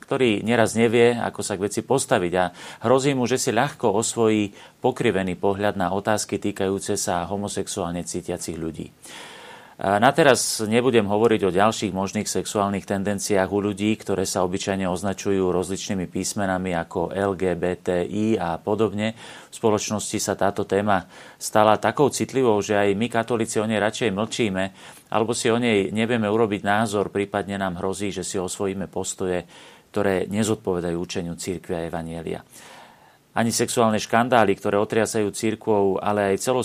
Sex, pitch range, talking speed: male, 95-110 Hz, 150 wpm